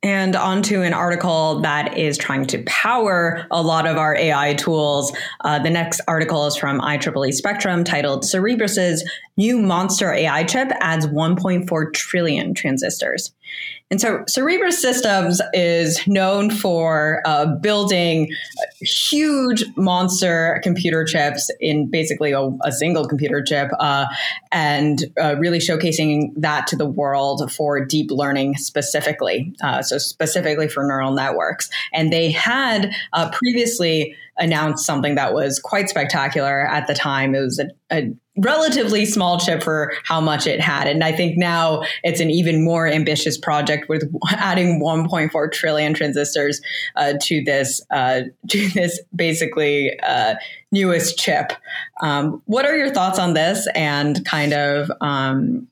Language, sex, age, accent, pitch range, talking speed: English, female, 20-39, American, 145-180 Hz, 145 wpm